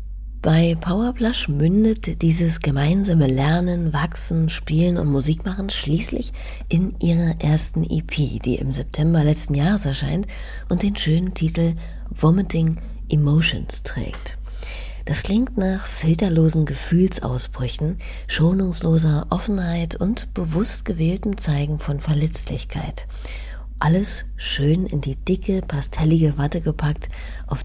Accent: German